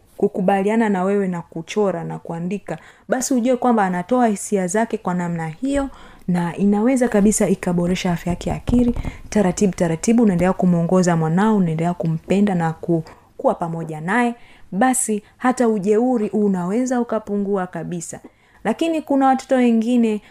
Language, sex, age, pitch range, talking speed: Swahili, female, 30-49, 175-235 Hz, 130 wpm